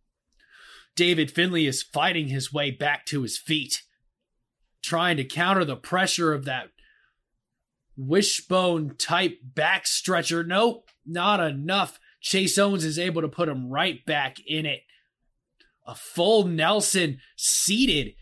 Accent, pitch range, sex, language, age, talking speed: American, 155-205 Hz, male, English, 20-39, 130 wpm